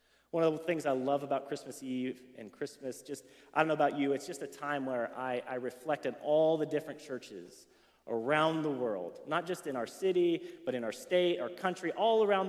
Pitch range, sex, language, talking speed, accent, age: 140-185 Hz, male, English, 220 wpm, American, 30-49